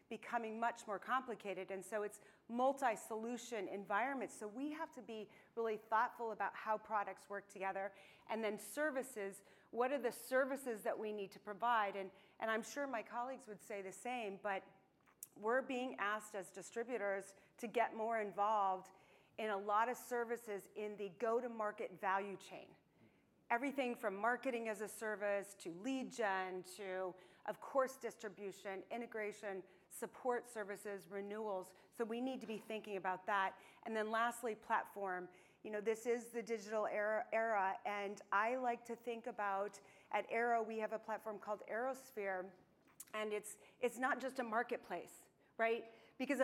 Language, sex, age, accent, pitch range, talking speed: English, female, 40-59, American, 195-235 Hz, 165 wpm